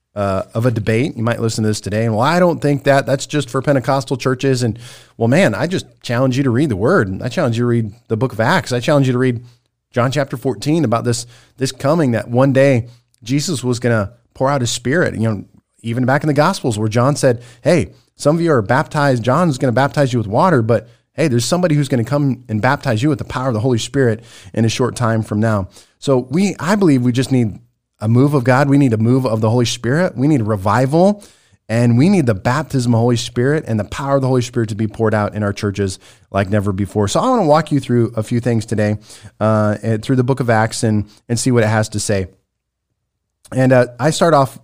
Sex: male